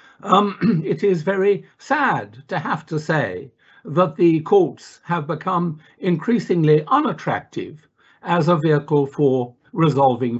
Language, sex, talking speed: English, male, 120 wpm